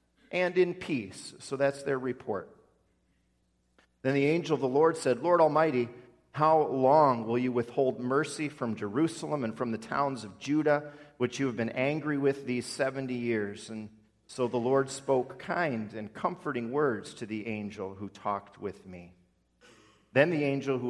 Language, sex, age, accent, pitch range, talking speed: English, male, 40-59, American, 110-140 Hz, 170 wpm